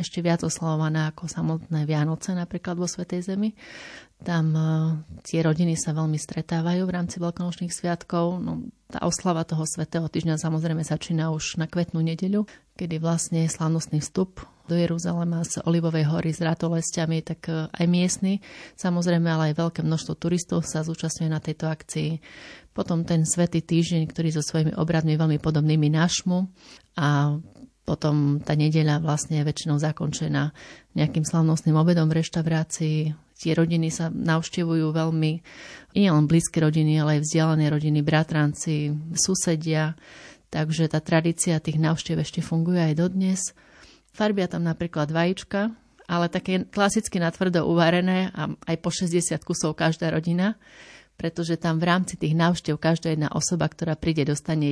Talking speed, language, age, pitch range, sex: 145 wpm, Slovak, 30-49, 155-175 Hz, female